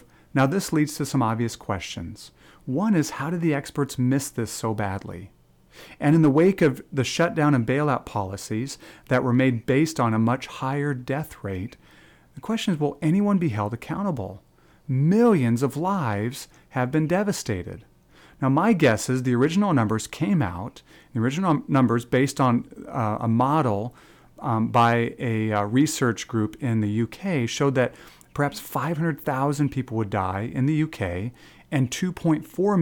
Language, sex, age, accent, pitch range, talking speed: English, male, 40-59, American, 115-150 Hz, 165 wpm